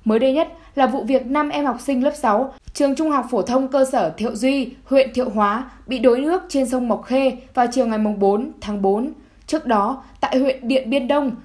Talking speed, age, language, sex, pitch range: 235 wpm, 10-29, Vietnamese, female, 230-285 Hz